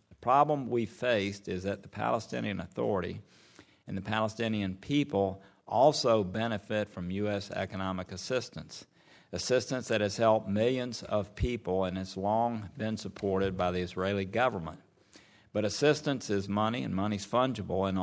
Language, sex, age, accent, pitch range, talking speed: English, male, 50-69, American, 95-115 Hz, 145 wpm